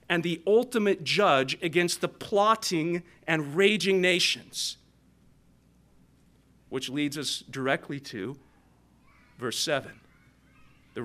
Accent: American